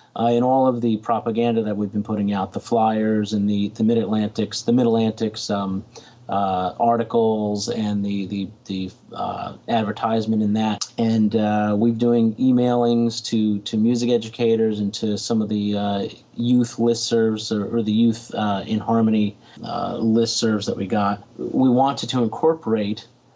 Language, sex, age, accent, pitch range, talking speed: English, male, 30-49, American, 105-120 Hz, 165 wpm